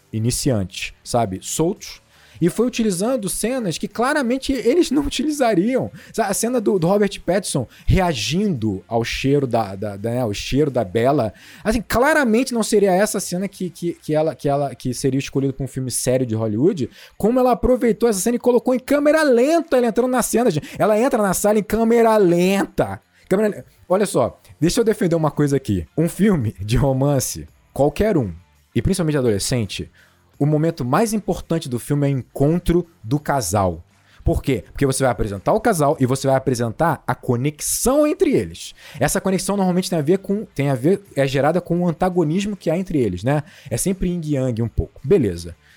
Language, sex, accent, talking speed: Portuguese, male, Brazilian, 190 wpm